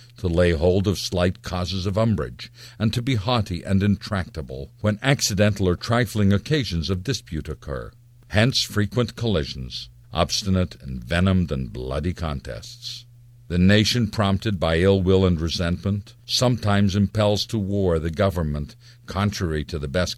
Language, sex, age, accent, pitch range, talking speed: English, male, 50-69, American, 85-115 Hz, 145 wpm